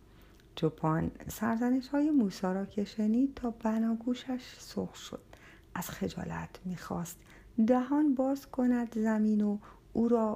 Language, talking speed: Persian, 115 wpm